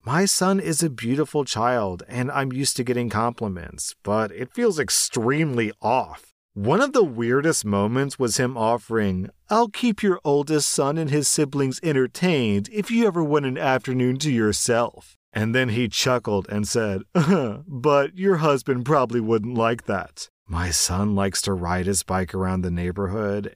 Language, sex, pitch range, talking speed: English, male, 100-135 Hz, 170 wpm